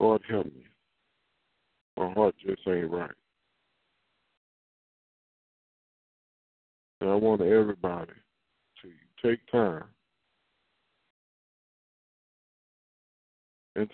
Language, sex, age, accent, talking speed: English, female, 50-69, American, 70 wpm